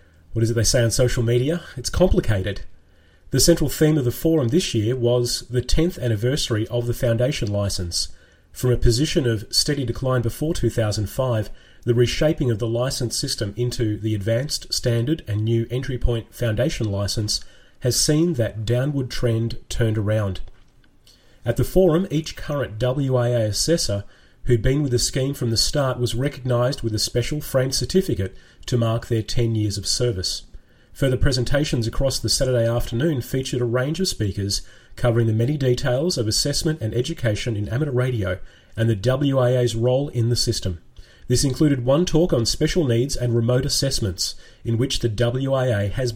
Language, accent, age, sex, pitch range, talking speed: English, Australian, 30-49, male, 115-135 Hz, 170 wpm